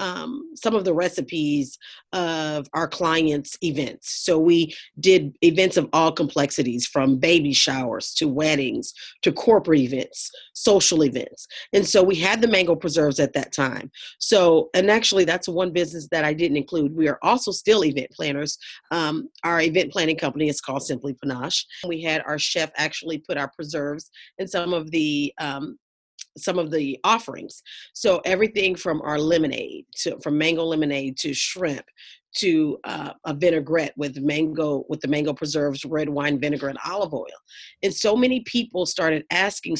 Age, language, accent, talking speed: 40-59, English, American, 165 wpm